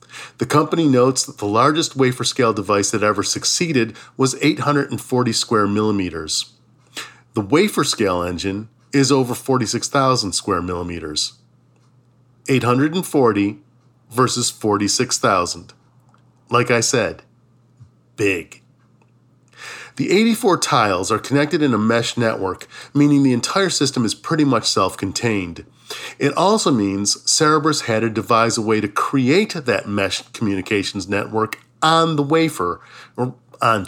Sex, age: male, 40-59